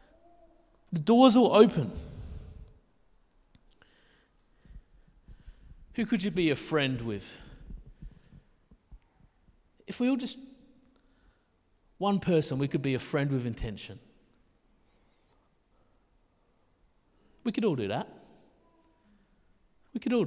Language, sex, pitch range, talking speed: English, male, 120-175 Hz, 95 wpm